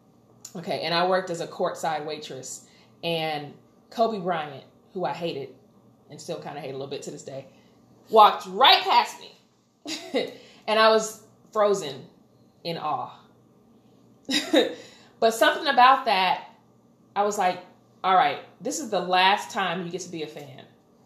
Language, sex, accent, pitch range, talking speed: English, female, American, 175-220 Hz, 155 wpm